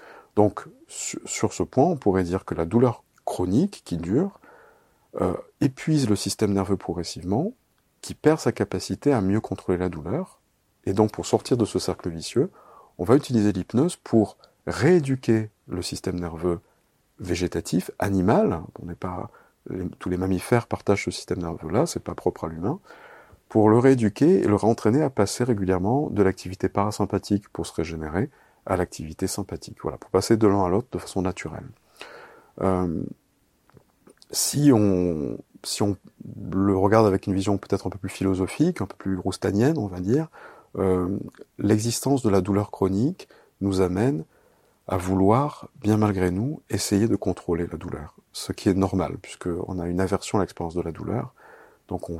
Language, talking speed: French, 170 wpm